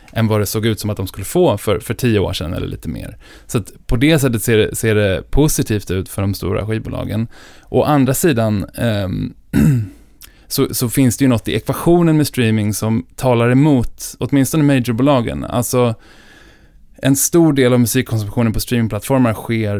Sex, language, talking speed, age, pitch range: male, Swedish, 185 wpm, 20-39, 105-130 Hz